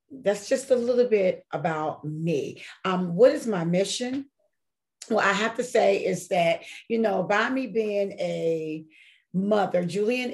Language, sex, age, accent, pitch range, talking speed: English, female, 40-59, American, 170-220 Hz, 155 wpm